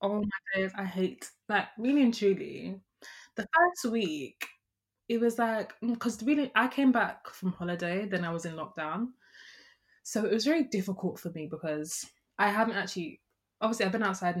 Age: 20-39